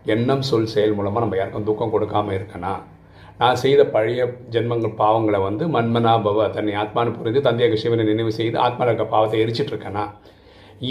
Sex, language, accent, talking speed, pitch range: male, Tamil, native, 145 wpm, 105-125 Hz